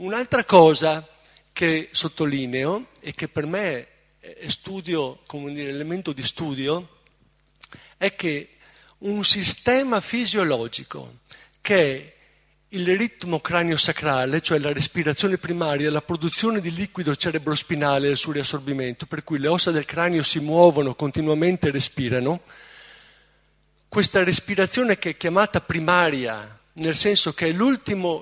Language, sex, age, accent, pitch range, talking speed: Italian, male, 50-69, native, 150-190 Hz, 130 wpm